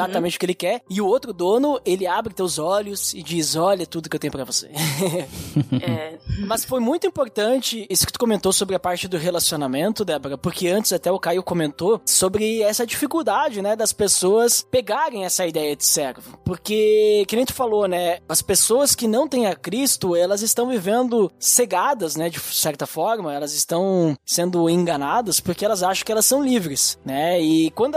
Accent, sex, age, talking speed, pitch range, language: Brazilian, male, 20-39, 190 wpm, 175-245 Hz, Portuguese